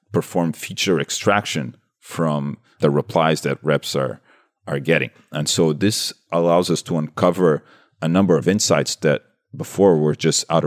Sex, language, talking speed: male, English, 150 wpm